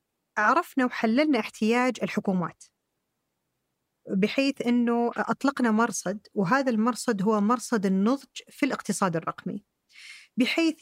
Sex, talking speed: female, 95 wpm